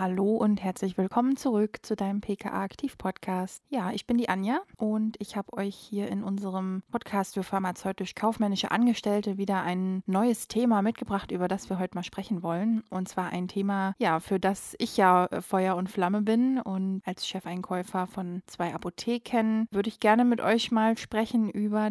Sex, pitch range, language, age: female, 185-220 Hz, German, 20-39